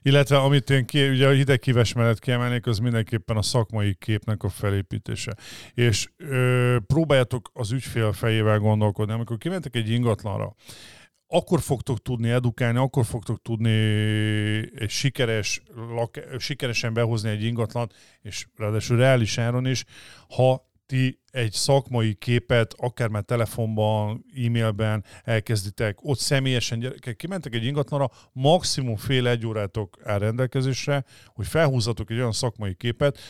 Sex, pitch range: male, 110-130 Hz